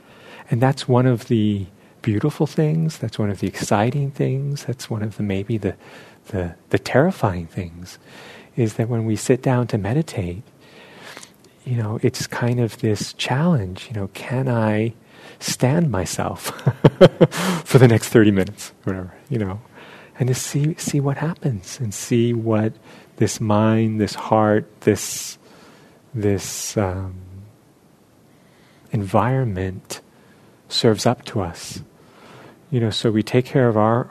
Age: 40-59